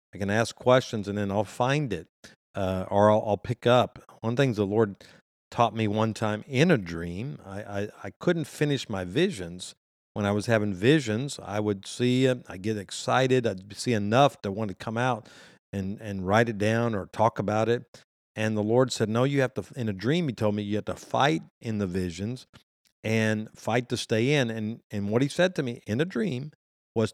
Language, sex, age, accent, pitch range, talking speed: English, male, 50-69, American, 105-125 Hz, 225 wpm